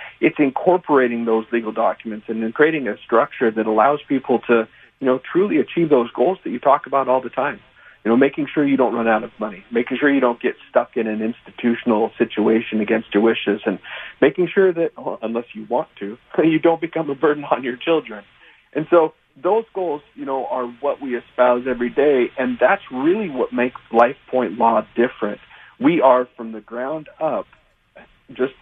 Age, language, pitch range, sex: 40-59, English, 115-140 Hz, male